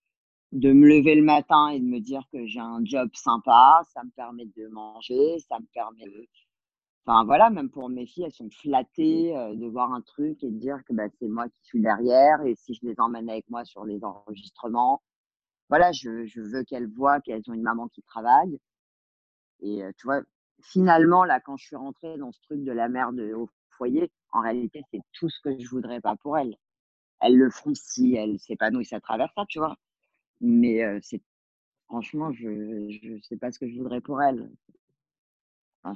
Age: 40-59